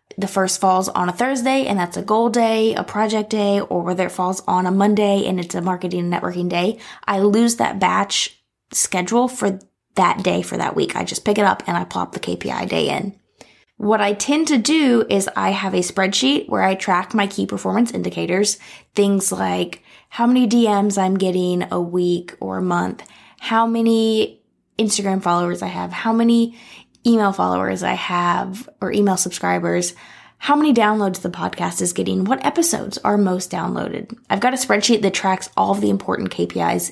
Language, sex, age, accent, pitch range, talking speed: English, female, 20-39, American, 180-230 Hz, 190 wpm